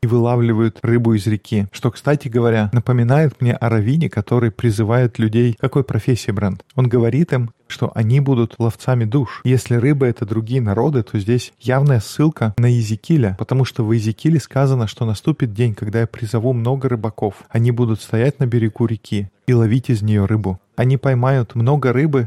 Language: Russian